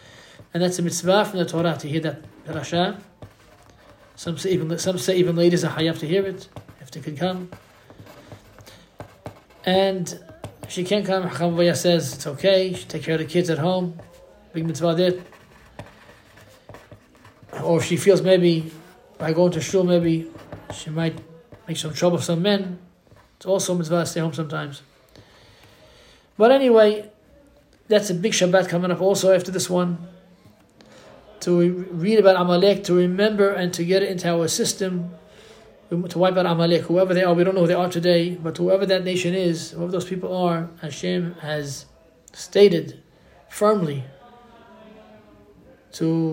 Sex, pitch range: male, 160-185 Hz